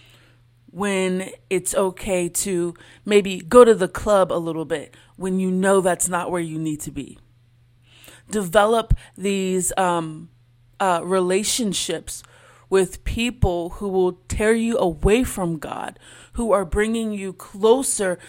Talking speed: 135 wpm